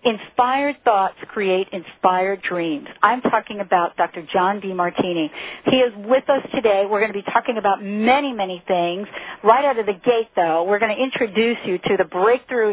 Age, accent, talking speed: 50-69, American, 190 wpm